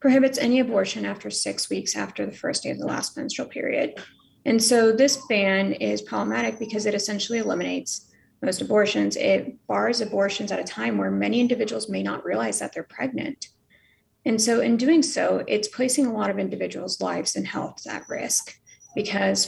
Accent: American